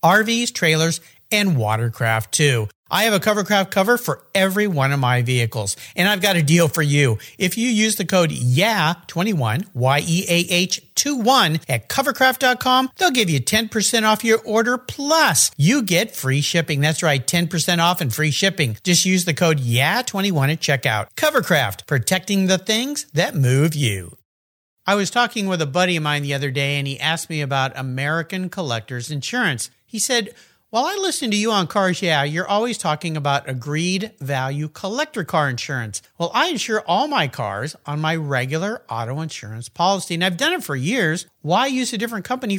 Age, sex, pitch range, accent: 50-69, male, 145-215 Hz, American